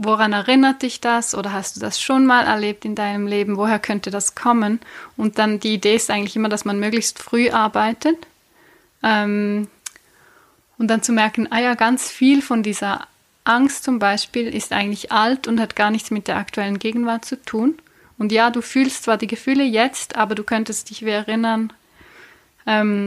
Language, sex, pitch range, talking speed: German, female, 210-235 Hz, 185 wpm